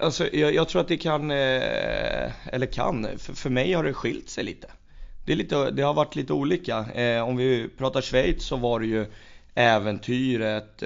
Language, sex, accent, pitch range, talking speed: Swedish, male, native, 105-115 Hz, 175 wpm